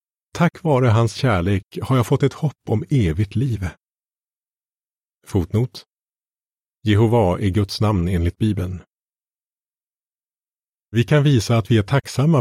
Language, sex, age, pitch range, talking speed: Swedish, male, 30-49, 95-130 Hz, 125 wpm